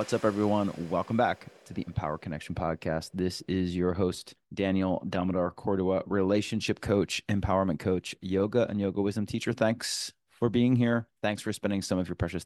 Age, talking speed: 30-49, 175 wpm